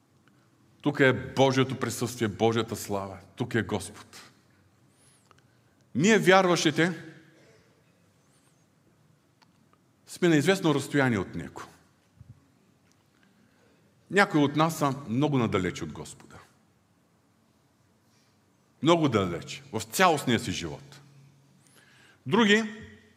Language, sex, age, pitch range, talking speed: Bulgarian, male, 50-69, 120-185 Hz, 85 wpm